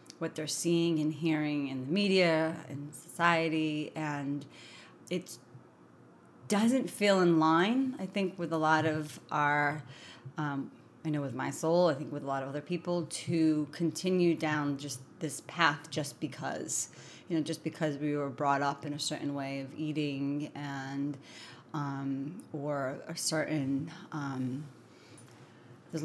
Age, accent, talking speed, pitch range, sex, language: 30-49, American, 150 wpm, 145-175 Hz, female, English